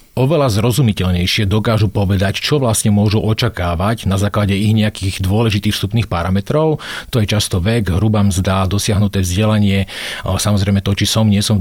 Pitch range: 100-120 Hz